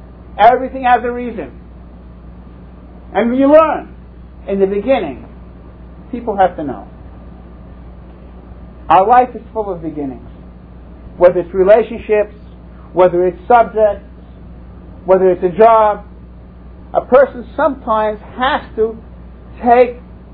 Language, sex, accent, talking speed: English, male, American, 105 wpm